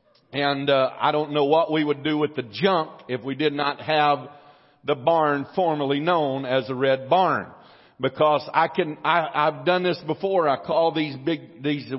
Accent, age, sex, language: American, 50-69, male, English